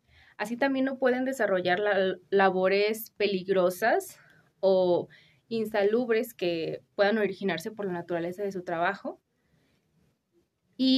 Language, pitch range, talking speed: Spanish, 185-225 Hz, 105 wpm